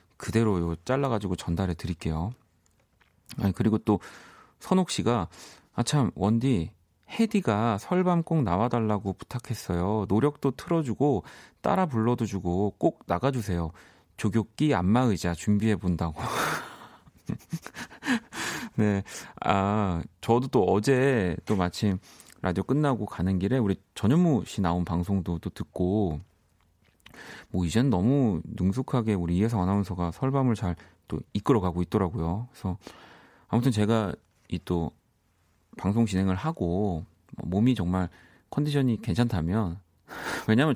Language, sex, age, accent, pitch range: Korean, male, 30-49, native, 90-120 Hz